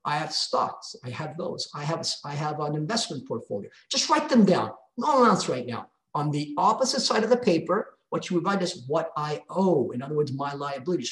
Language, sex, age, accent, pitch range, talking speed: English, male, 50-69, American, 150-200 Hz, 220 wpm